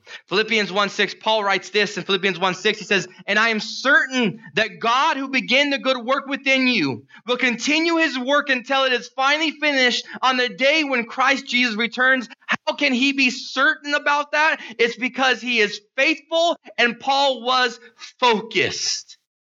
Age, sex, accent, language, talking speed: 30-49, male, American, English, 170 wpm